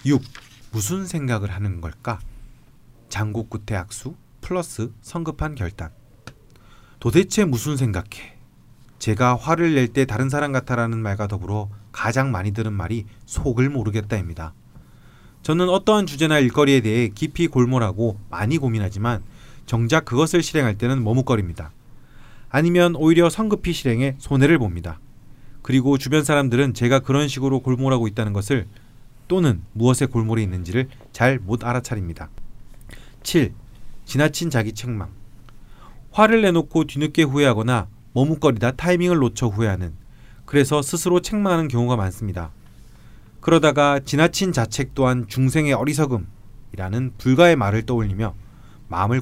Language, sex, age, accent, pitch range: Korean, male, 30-49, native, 110-140 Hz